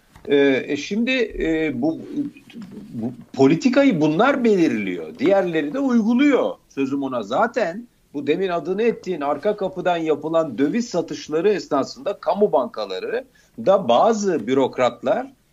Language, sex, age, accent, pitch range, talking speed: Turkish, male, 50-69, native, 160-250 Hz, 110 wpm